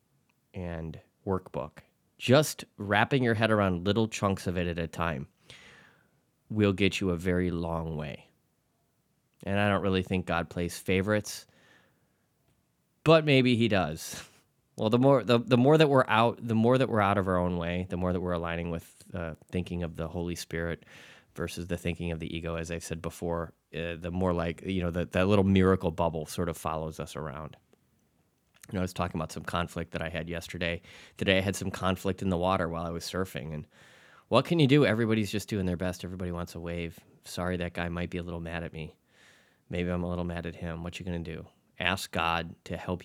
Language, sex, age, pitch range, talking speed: English, male, 20-39, 85-95 Hz, 215 wpm